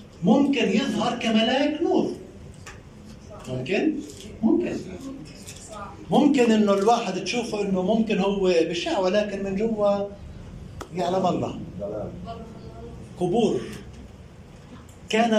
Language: Arabic